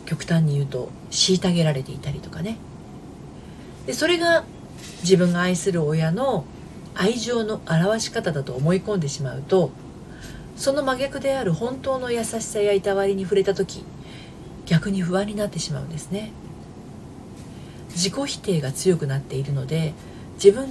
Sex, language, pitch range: female, Japanese, 160-215 Hz